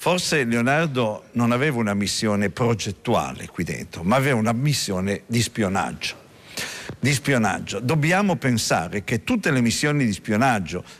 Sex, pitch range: male, 125-180 Hz